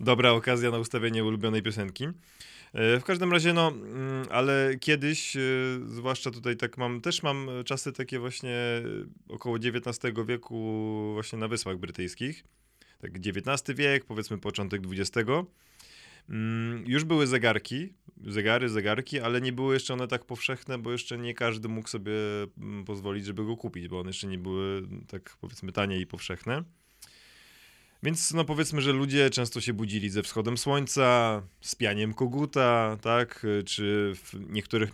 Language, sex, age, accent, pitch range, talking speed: Polish, male, 20-39, native, 105-130 Hz, 140 wpm